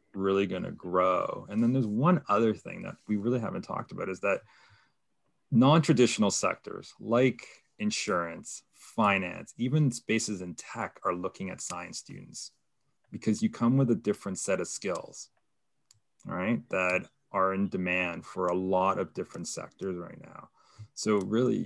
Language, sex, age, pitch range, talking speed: English, male, 30-49, 95-135 Hz, 155 wpm